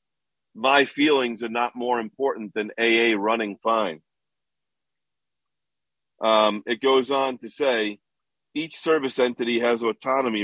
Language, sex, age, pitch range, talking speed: English, male, 50-69, 105-120 Hz, 120 wpm